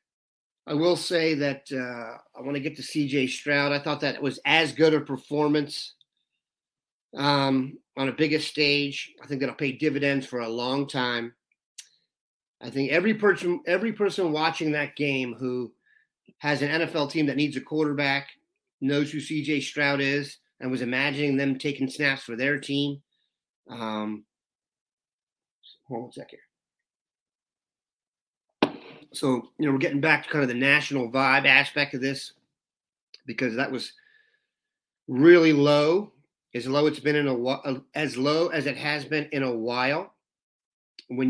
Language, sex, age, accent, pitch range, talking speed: English, male, 40-59, American, 135-155 Hz, 160 wpm